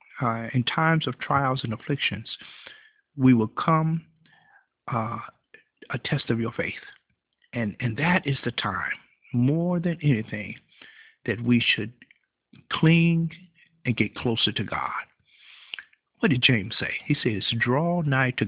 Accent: American